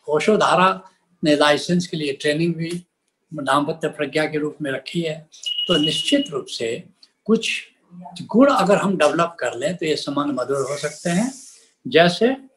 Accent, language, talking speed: native, Hindi, 160 wpm